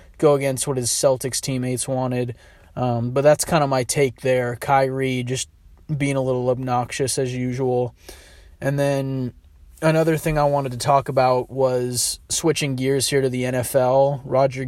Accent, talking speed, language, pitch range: American, 165 wpm, English, 125-145 Hz